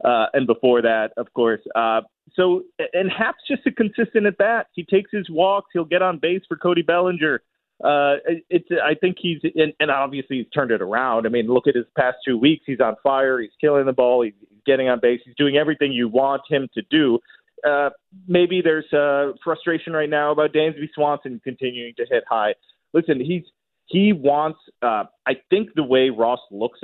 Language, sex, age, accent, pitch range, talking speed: English, male, 30-49, American, 125-165 Hz, 200 wpm